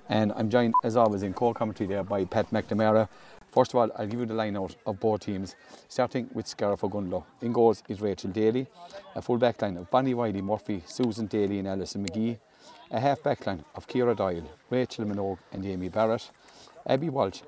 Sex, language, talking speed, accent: male, English, 190 wpm, Irish